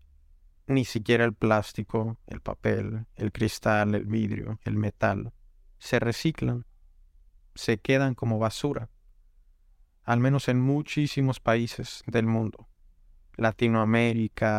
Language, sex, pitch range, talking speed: Spanish, male, 95-120 Hz, 105 wpm